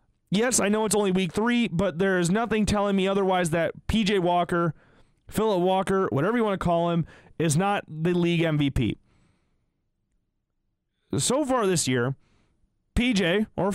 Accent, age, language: American, 30-49, English